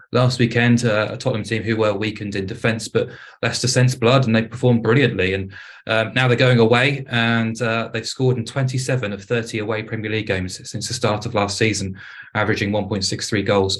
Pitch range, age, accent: 105-125 Hz, 20-39, British